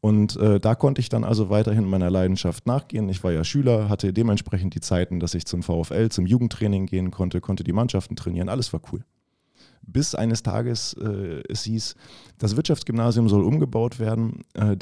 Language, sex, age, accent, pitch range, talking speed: German, male, 30-49, German, 95-130 Hz, 185 wpm